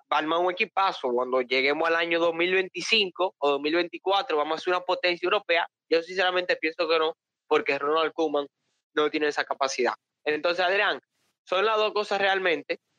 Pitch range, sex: 140-180 Hz, male